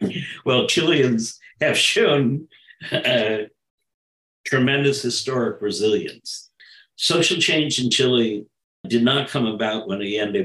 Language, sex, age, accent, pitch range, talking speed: English, male, 60-79, American, 100-125 Hz, 105 wpm